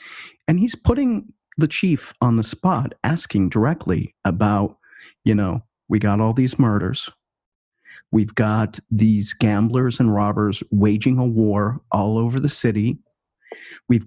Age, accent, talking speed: 40-59, American, 135 wpm